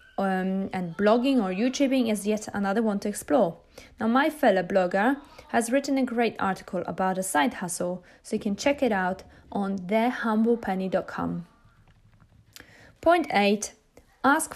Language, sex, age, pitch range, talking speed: English, female, 20-39, 190-255 Hz, 145 wpm